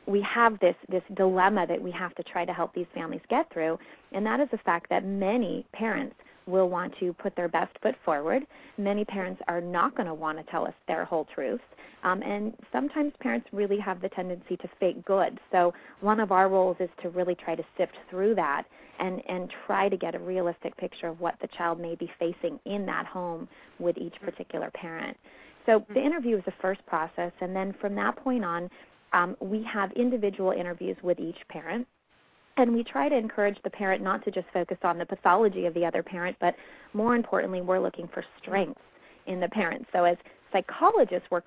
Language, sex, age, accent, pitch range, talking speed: English, female, 30-49, American, 175-210 Hz, 210 wpm